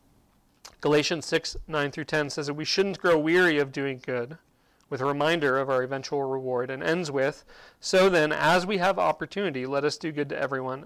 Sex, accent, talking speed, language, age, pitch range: male, American, 200 wpm, English, 40-59, 140-160 Hz